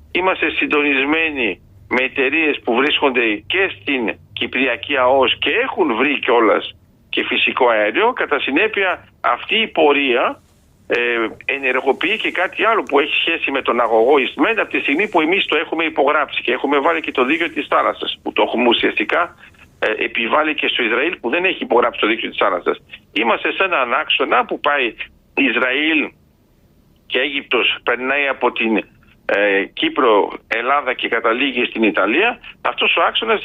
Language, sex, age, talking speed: Greek, male, 50-69, 155 wpm